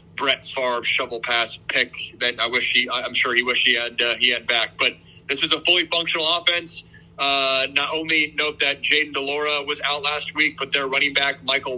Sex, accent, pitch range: male, American, 125-150 Hz